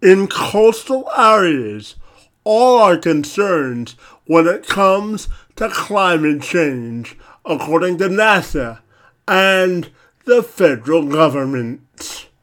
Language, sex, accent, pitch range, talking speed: English, male, American, 145-215 Hz, 90 wpm